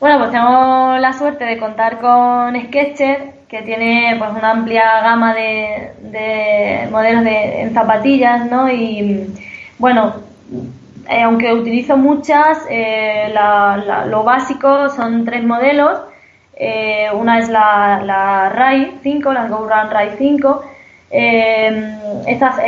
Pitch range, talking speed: 210-250 Hz, 130 wpm